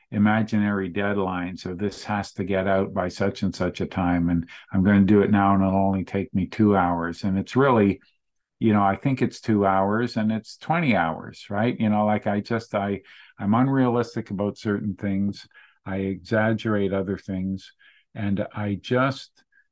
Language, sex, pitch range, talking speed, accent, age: English, male, 95-110 Hz, 185 wpm, American, 50-69